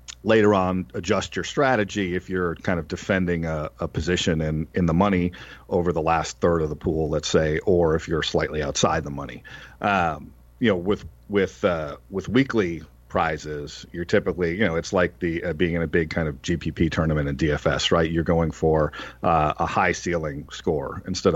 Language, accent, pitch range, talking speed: English, American, 80-105 Hz, 195 wpm